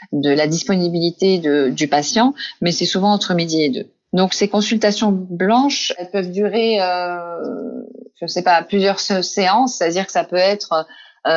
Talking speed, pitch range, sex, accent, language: 165 wpm, 180-225 Hz, female, French, English